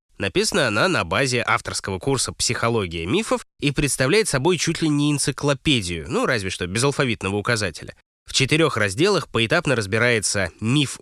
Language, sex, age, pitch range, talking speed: Russian, male, 20-39, 100-140 Hz, 145 wpm